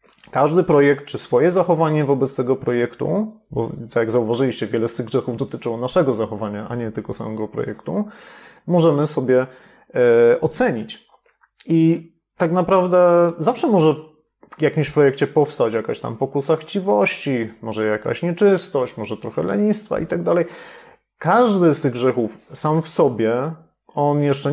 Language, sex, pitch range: Polish, male, 125-165 Hz